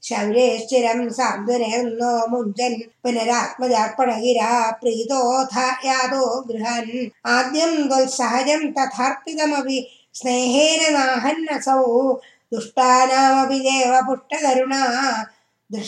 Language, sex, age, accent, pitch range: Tamil, female, 20-39, native, 235-265 Hz